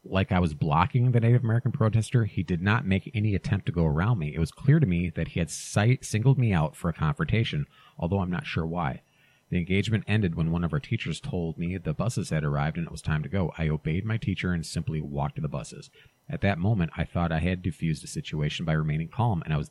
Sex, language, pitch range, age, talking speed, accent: male, English, 80-120 Hz, 40-59, 255 wpm, American